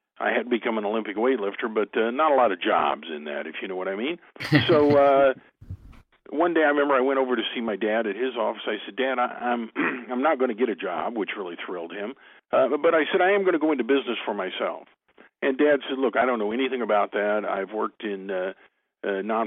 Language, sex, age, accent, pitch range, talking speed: English, male, 50-69, American, 105-135 Hz, 245 wpm